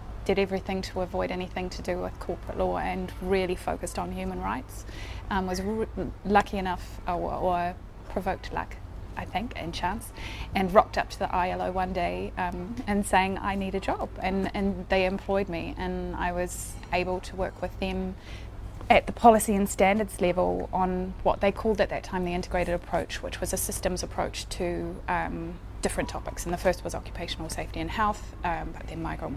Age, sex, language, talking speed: 20-39, female, English, 190 wpm